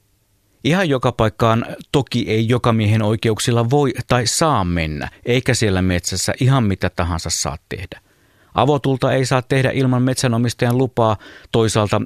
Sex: male